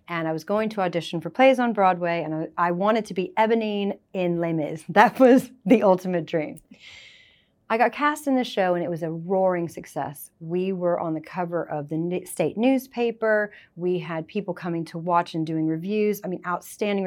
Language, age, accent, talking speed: English, 30-49, American, 200 wpm